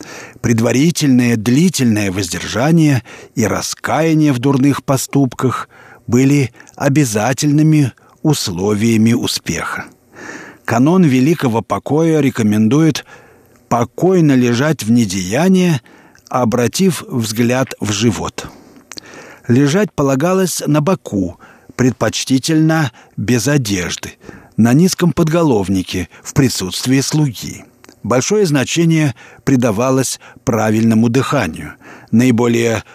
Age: 50-69